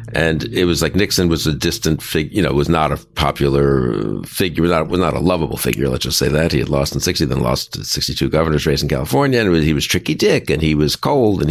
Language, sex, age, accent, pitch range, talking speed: English, male, 60-79, American, 70-90 Hz, 255 wpm